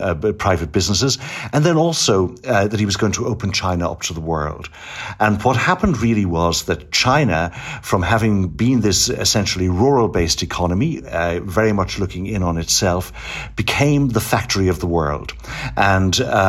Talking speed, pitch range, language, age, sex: 165 wpm, 95-120 Hz, English, 60-79, male